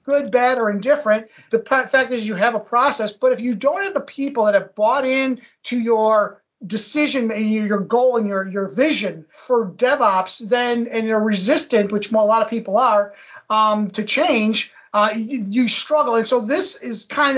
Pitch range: 205-245 Hz